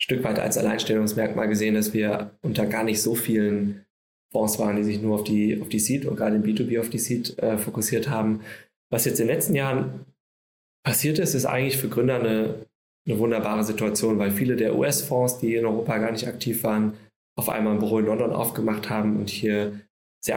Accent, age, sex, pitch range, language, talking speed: German, 20-39, male, 105-115 Hz, German, 205 wpm